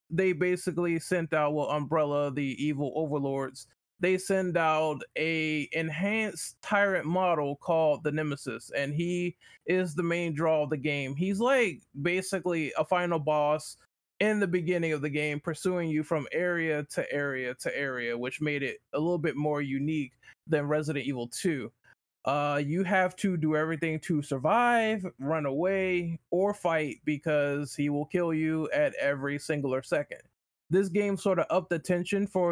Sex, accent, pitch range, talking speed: male, American, 145-175 Hz, 165 wpm